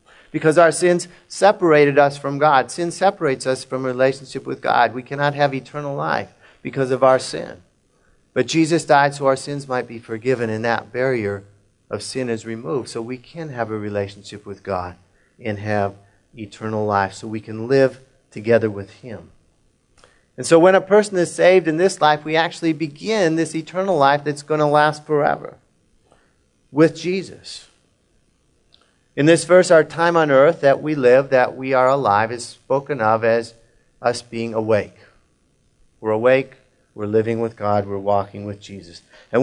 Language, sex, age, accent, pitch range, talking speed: English, male, 40-59, American, 110-150 Hz, 175 wpm